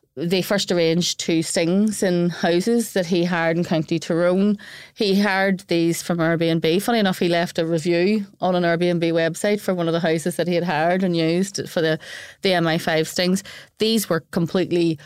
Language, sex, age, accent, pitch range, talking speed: English, female, 30-49, Irish, 160-185 Hz, 185 wpm